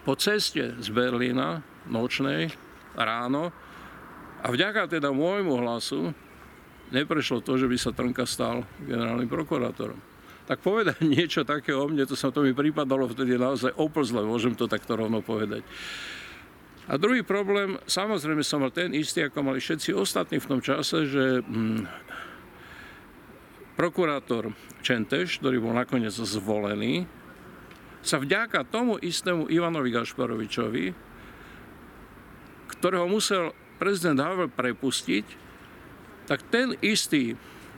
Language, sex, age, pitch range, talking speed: Slovak, male, 50-69, 120-160 Hz, 120 wpm